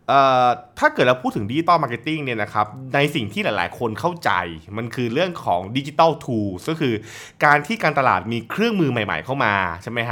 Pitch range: 110-155 Hz